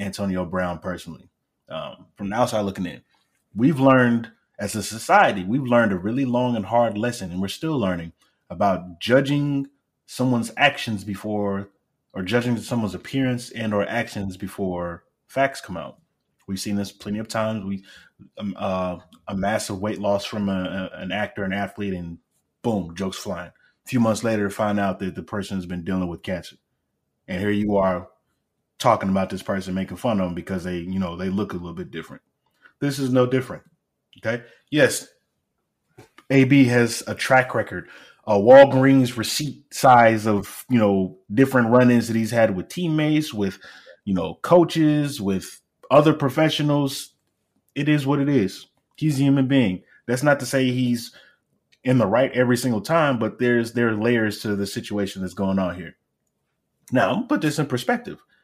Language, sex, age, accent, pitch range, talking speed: English, male, 20-39, American, 95-130 Hz, 175 wpm